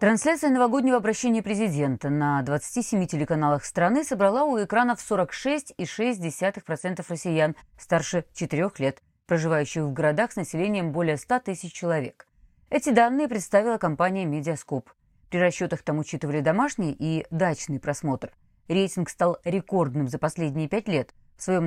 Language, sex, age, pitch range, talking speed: Russian, female, 30-49, 150-210 Hz, 130 wpm